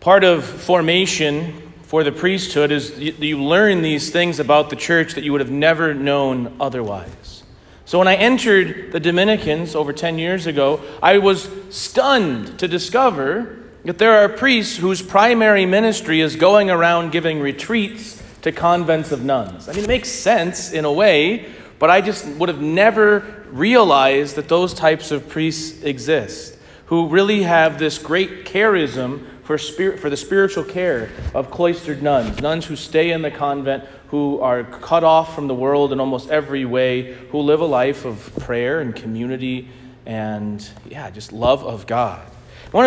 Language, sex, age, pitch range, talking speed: English, male, 40-59, 140-185 Hz, 165 wpm